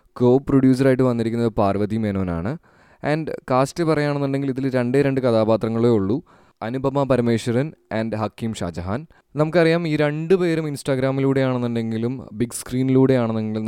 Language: Malayalam